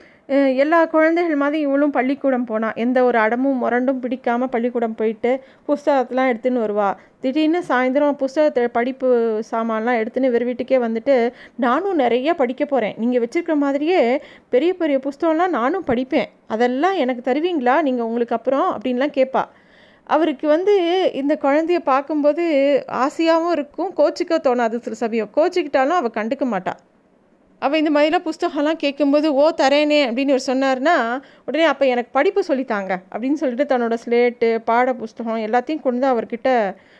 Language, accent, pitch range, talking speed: Tamil, native, 240-295 Hz, 140 wpm